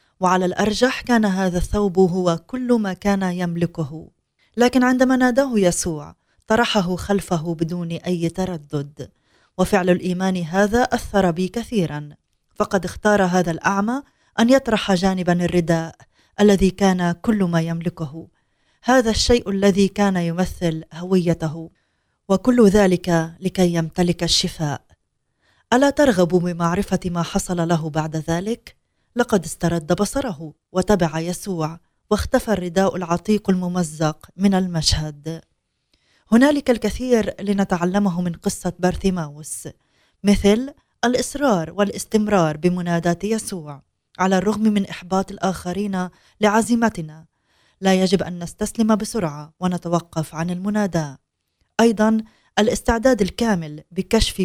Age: 20-39